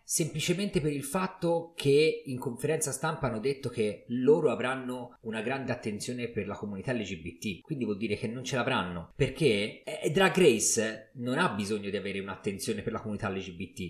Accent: native